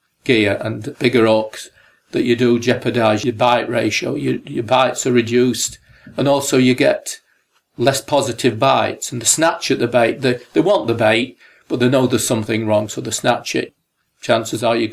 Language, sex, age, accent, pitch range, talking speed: English, male, 40-59, British, 110-130 Hz, 195 wpm